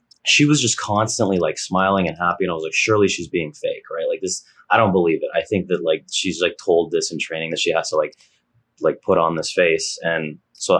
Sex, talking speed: male, 250 wpm